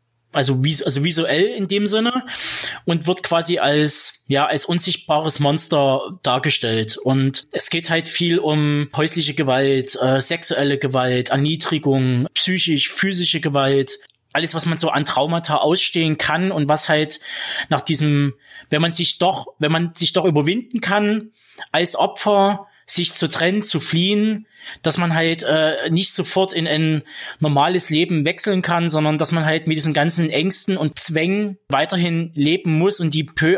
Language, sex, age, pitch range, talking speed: German, male, 20-39, 145-175 Hz, 155 wpm